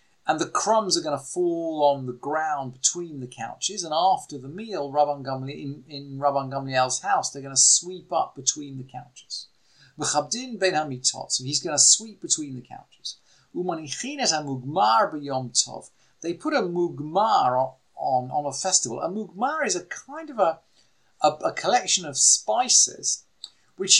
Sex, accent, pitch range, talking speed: male, British, 135-195 Hz, 155 wpm